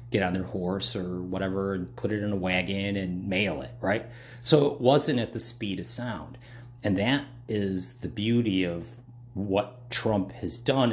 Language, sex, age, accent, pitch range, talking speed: English, male, 40-59, American, 95-120 Hz, 185 wpm